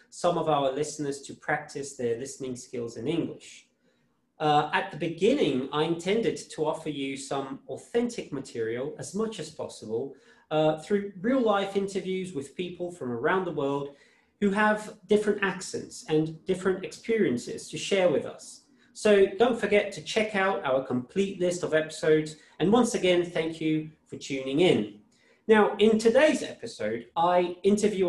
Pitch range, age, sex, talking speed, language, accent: 145-195 Hz, 30-49, male, 160 wpm, English, British